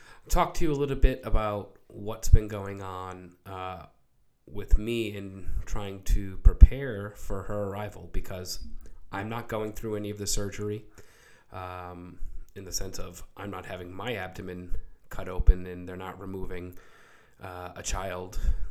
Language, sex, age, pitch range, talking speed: English, male, 20-39, 90-105 Hz, 155 wpm